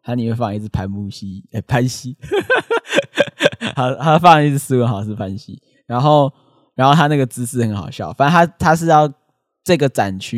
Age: 10-29